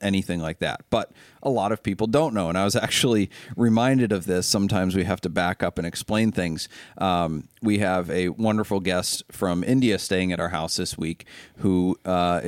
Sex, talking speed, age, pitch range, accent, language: male, 200 wpm, 30-49, 95-115 Hz, American, English